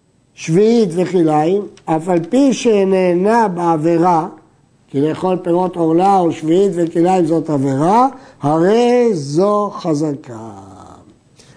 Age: 50-69